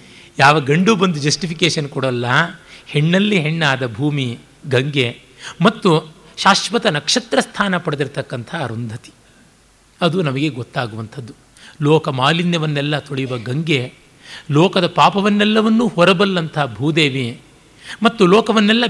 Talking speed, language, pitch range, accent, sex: 90 wpm, Kannada, 135-170 Hz, native, male